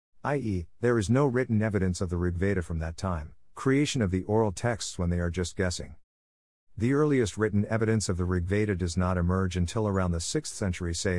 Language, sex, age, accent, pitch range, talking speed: English, male, 50-69, American, 90-110 Hz, 205 wpm